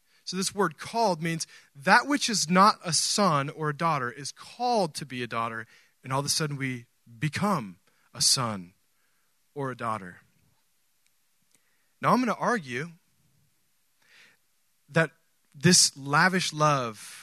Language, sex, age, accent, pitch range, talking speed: English, male, 30-49, American, 145-205 Hz, 145 wpm